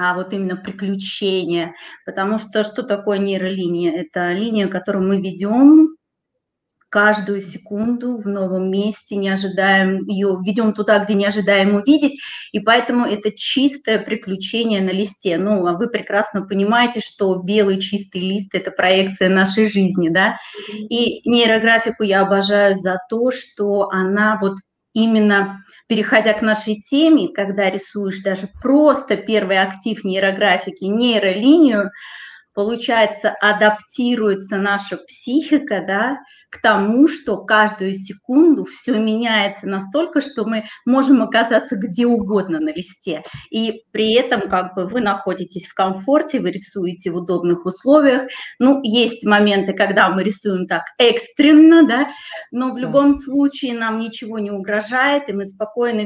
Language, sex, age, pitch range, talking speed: Russian, female, 20-39, 195-235 Hz, 135 wpm